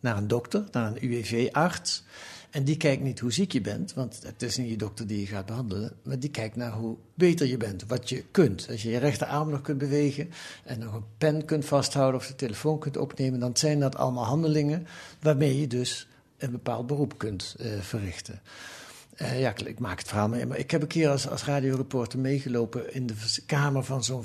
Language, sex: Dutch, male